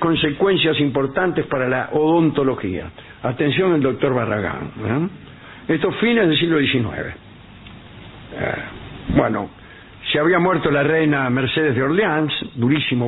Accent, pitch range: Argentinian, 120-155 Hz